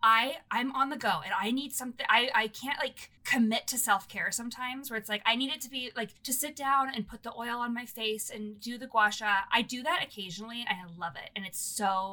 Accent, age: American, 20-39